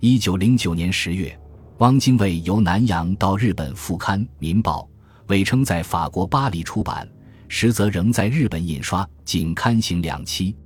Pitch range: 80-115 Hz